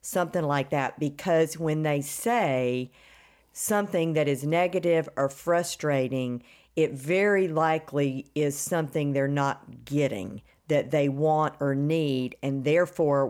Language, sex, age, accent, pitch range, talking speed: English, female, 50-69, American, 140-165 Hz, 125 wpm